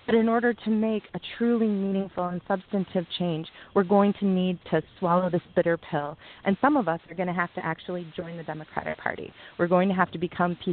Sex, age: female, 30-49